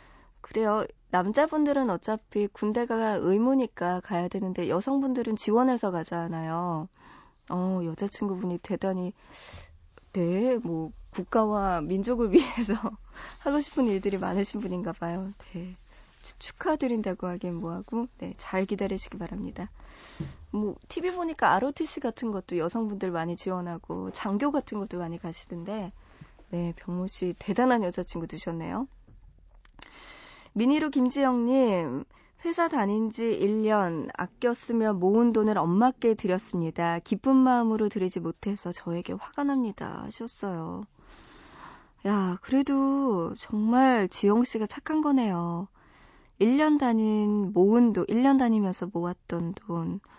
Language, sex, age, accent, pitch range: Korean, female, 20-39, native, 180-240 Hz